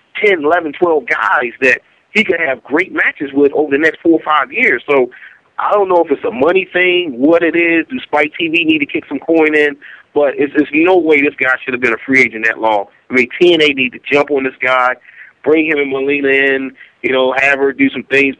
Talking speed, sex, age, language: 250 wpm, male, 40-59, English